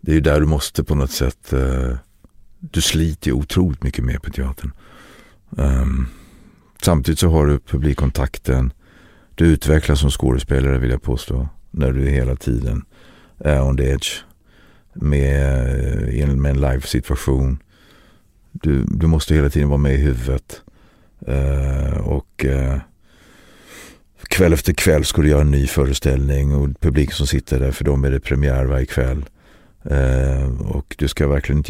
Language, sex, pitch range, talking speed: Swedish, male, 65-80 Hz, 145 wpm